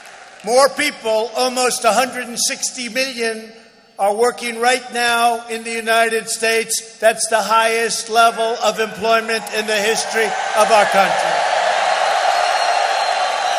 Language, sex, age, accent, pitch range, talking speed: English, male, 50-69, American, 235-350 Hz, 110 wpm